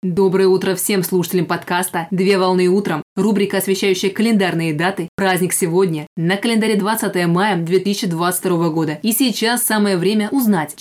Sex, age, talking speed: female, 20-39, 140 wpm